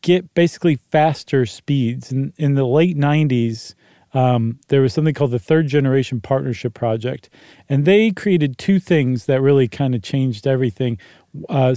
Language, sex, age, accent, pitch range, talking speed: English, male, 40-59, American, 125-160 Hz, 160 wpm